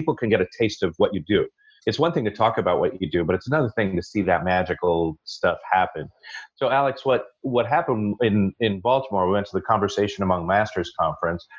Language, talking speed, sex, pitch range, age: English, 230 wpm, male, 95-125 Hz, 40-59